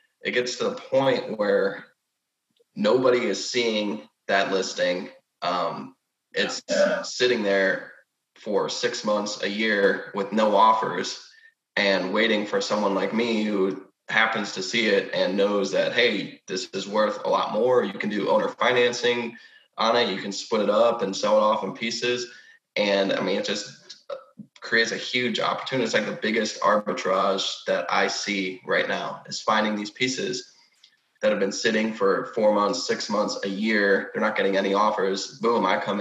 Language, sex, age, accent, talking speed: English, male, 20-39, American, 175 wpm